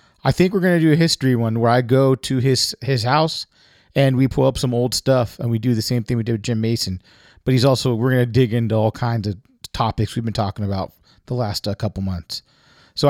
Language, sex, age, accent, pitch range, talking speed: English, male, 30-49, American, 115-140 Hz, 250 wpm